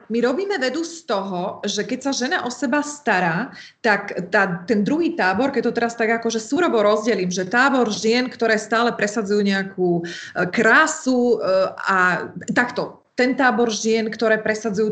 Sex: female